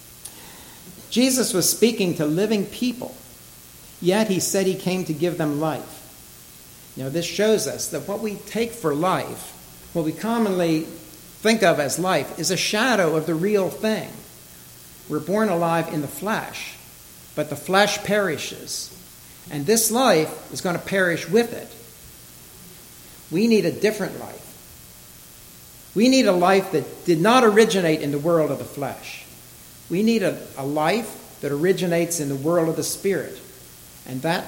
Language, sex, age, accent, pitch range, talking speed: English, male, 60-79, American, 130-190 Hz, 160 wpm